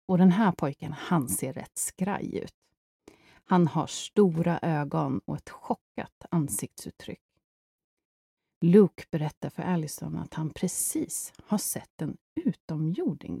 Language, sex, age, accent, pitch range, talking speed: Swedish, female, 30-49, native, 155-210 Hz, 125 wpm